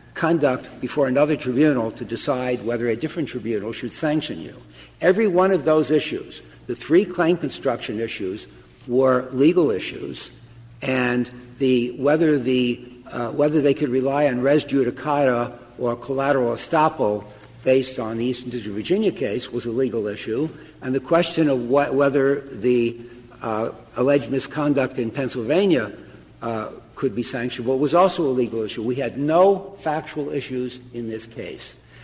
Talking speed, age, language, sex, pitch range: 155 wpm, 60-79, English, male, 120-145 Hz